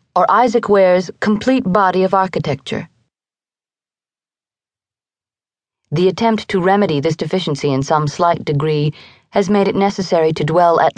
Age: 40-59